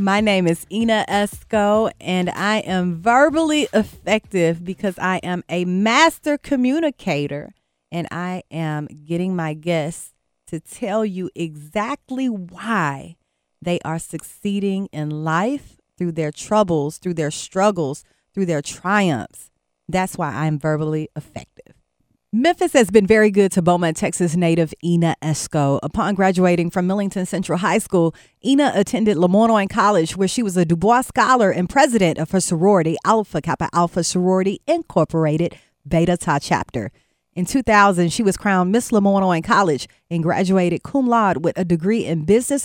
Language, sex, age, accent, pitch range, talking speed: English, female, 30-49, American, 165-210 Hz, 150 wpm